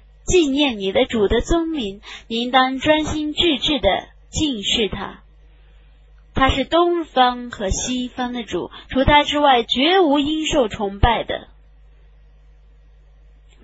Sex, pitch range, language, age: female, 215-295 Hz, Chinese, 20-39